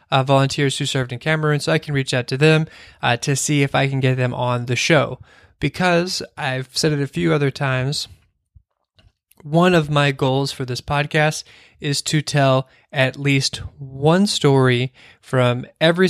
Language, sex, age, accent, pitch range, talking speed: English, male, 20-39, American, 130-155 Hz, 180 wpm